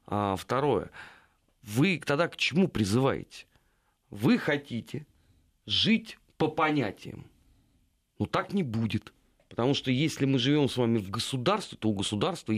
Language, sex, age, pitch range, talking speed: Russian, male, 40-59, 110-160 Hz, 130 wpm